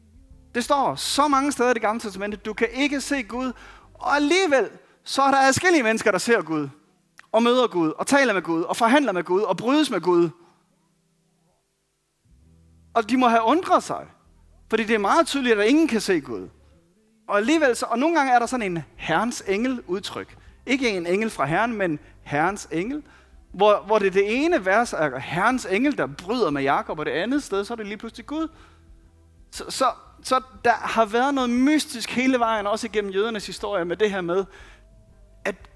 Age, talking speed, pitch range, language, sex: 30-49, 200 wpm, 175-255 Hz, Danish, male